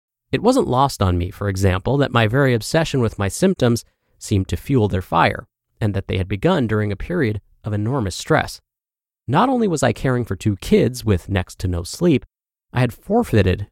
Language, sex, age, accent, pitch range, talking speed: English, male, 30-49, American, 100-140 Hz, 200 wpm